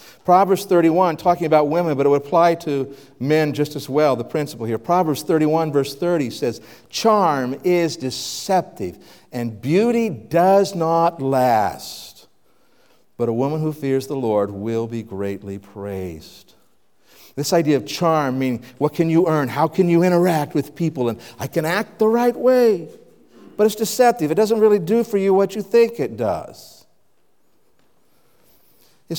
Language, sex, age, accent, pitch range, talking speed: English, male, 60-79, American, 115-165 Hz, 160 wpm